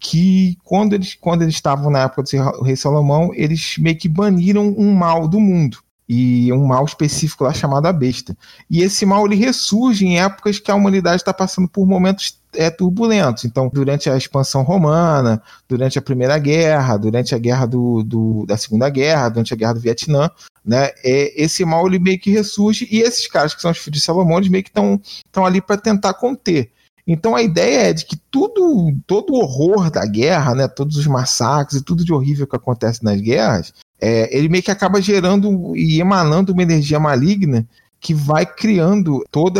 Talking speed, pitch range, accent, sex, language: 195 wpm, 130-185 Hz, Brazilian, male, Portuguese